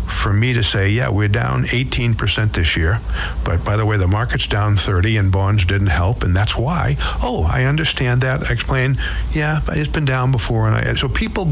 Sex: male